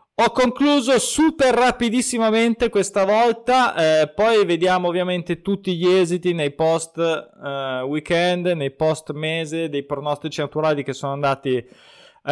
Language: Italian